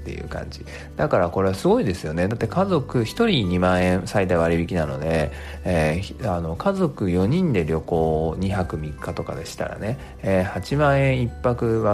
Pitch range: 85-125 Hz